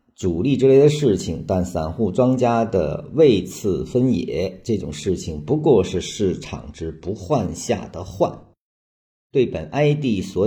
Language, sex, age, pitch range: Chinese, male, 50-69, 80-110 Hz